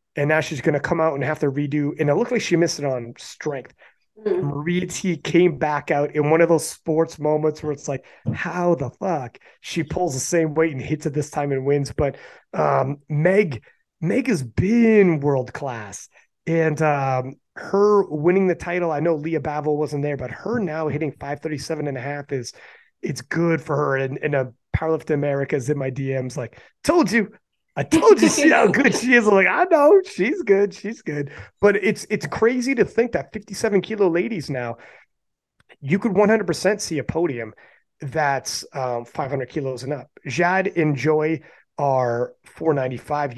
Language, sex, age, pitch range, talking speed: English, male, 30-49, 140-180 Hz, 190 wpm